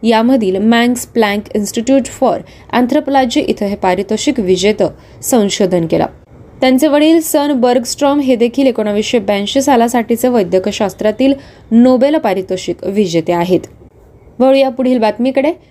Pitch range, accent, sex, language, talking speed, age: 200-270 Hz, native, female, Marathi, 110 wpm, 20-39